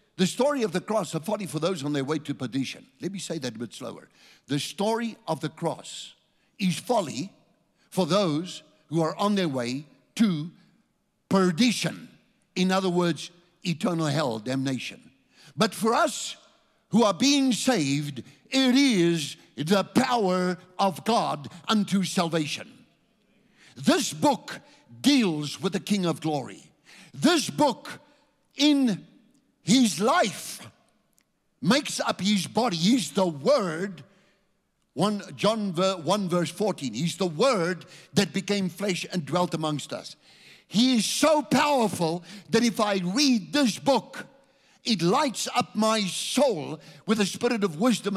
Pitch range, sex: 160-220 Hz, male